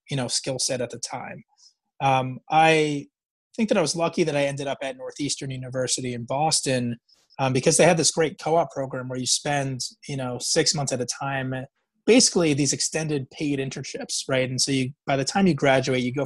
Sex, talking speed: male, 215 wpm